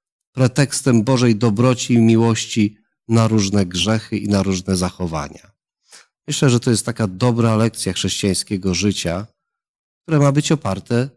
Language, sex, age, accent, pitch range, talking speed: Polish, male, 40-59, native, 100-130 Hz, 135 wpm